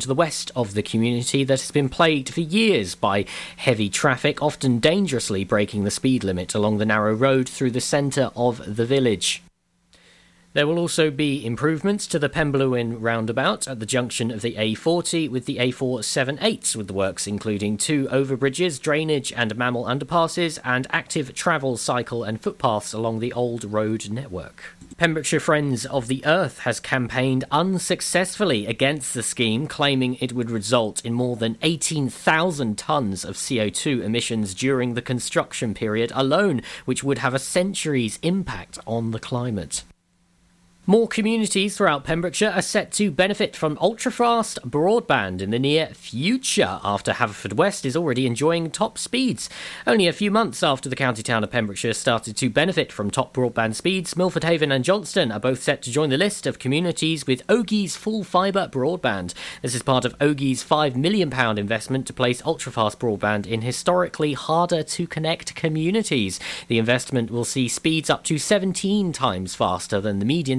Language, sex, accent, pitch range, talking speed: English, male, British, 115-165 Hz, 165 wpm